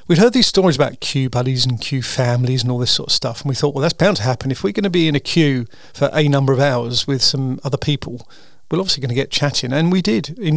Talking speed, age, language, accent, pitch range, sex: 290 wpm, 40-59, English, British, 130-160 Hz, male